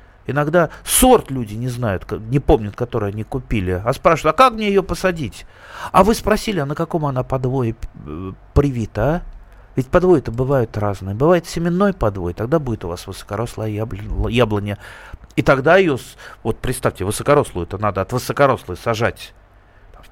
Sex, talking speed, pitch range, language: male, 160 wpm, 100-145 Hz, Russian